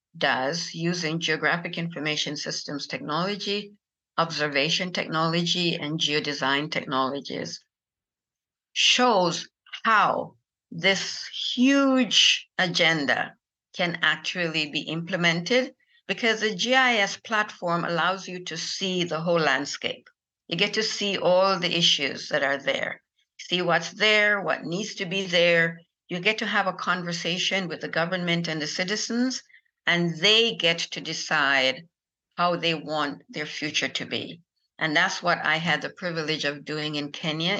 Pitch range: 155-185 Hz